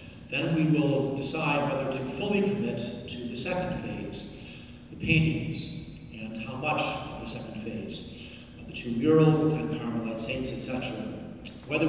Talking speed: 150 wpm